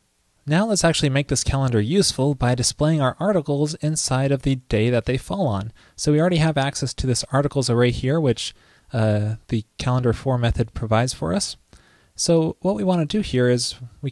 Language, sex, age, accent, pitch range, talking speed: English, male, 30-49, American, 115-140 Hz, 200 wpm